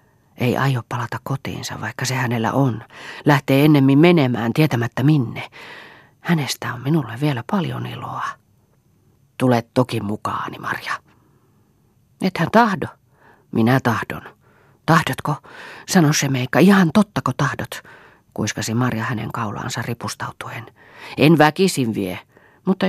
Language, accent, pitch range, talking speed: Finnish, native, 120-150 Hz, 115 wpm